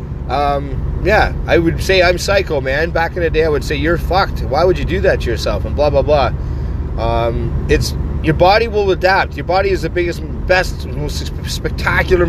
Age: 30-49